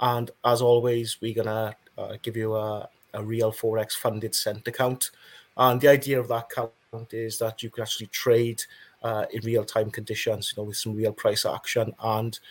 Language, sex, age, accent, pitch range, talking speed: English, male, 30-49, British, 110-125 Hz, 185 wpm